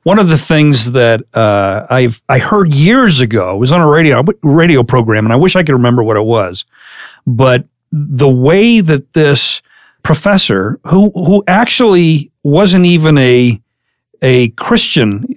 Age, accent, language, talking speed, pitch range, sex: 40-59, American, English, 160 wpm, 130-175 Hz, male